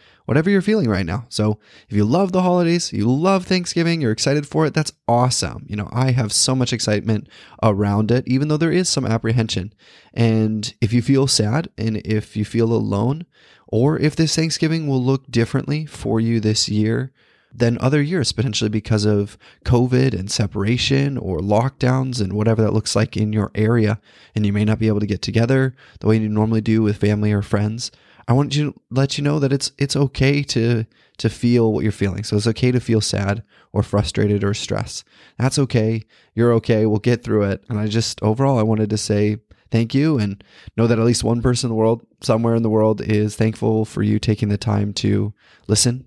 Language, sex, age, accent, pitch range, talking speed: English, male, 20-39, American, 105-130 Hz, 210 wpm